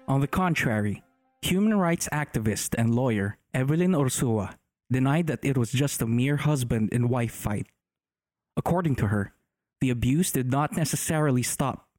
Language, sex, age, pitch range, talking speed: English, male, 20-39, 115-160 Hz, 140 wpm